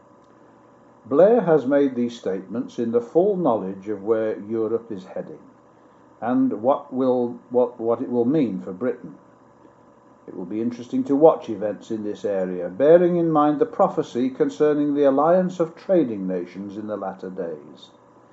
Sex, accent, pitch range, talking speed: male, British, 110-160 Hz, 155 wpm